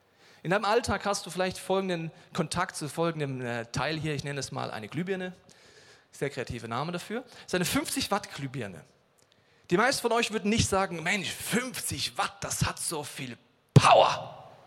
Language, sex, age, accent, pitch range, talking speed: German, male, 40-59, German, 130-195 Hz, 175 wpm